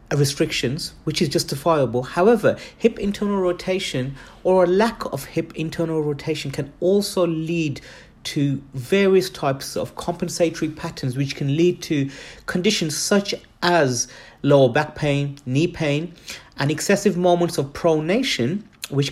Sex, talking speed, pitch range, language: male, 130 wpm, 145-195 Hz, English